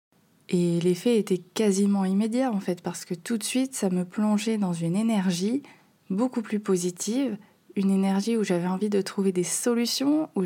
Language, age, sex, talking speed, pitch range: French, 20-39, female, 180 wpm, 180-225 Hz